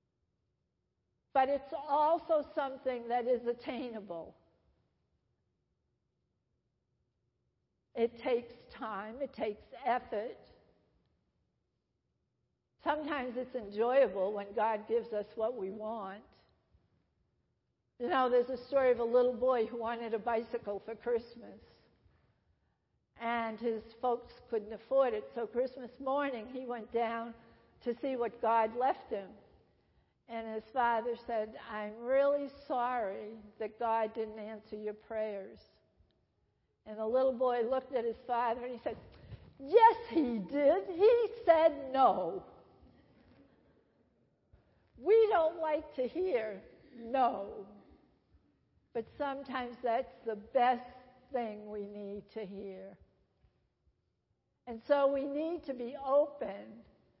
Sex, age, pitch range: female, 60-79, 225-270 Hz